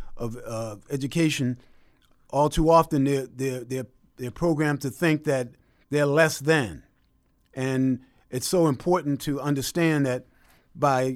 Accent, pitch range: American, 130-160 Hz